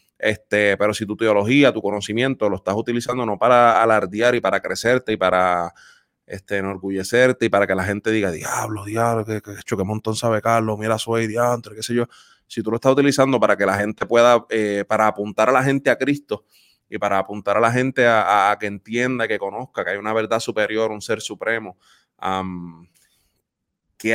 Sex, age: male, 20-39